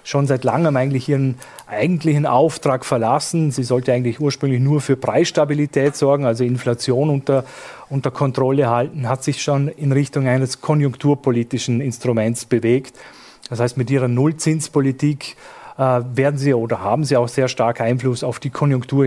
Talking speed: 150 wpm